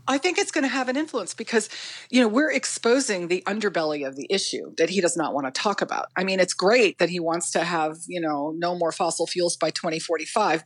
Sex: female